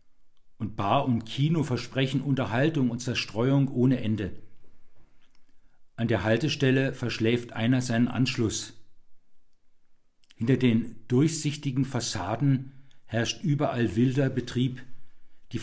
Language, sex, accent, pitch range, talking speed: German, male, German, 110-135 Hz, 100 wpm